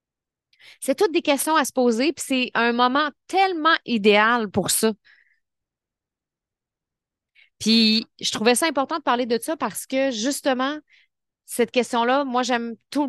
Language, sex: French, female